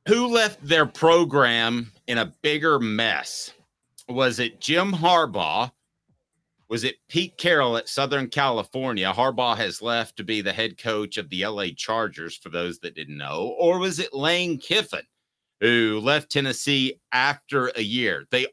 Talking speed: 155 wpm